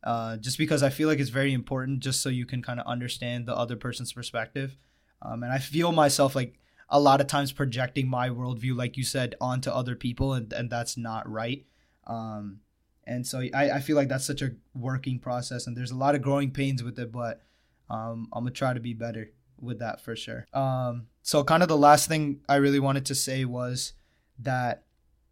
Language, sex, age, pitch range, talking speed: English, male, 20-39, 125-135 Hz, 215 wpm